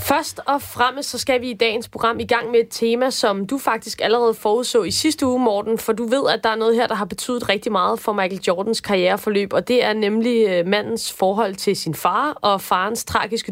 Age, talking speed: 20-39, 225 wpm